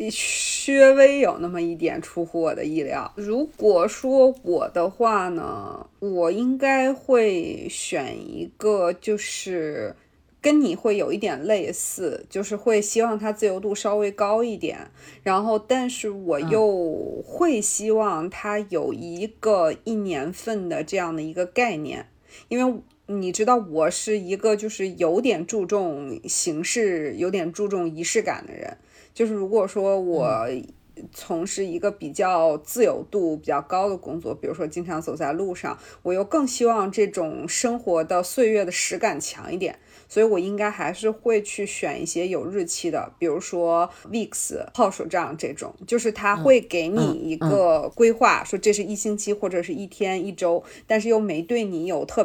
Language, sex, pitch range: Chinese, female, 175-235 Hz